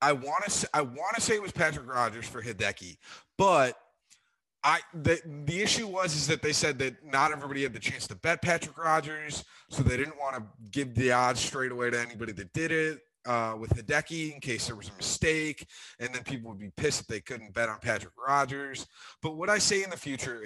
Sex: male